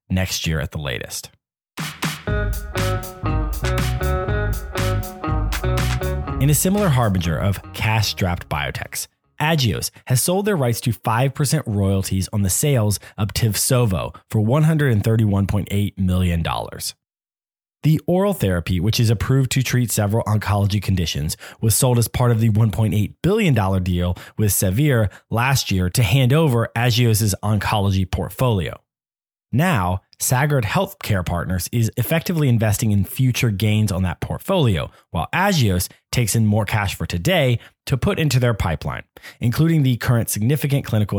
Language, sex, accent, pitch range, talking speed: English, male, American, 95-125 Hz, 130 wpm